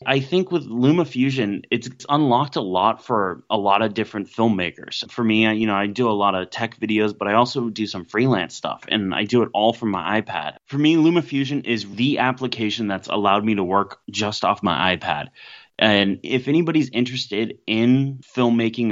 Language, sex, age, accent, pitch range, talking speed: English, male, 30-49, American, 100-125 Hz, 195 wpm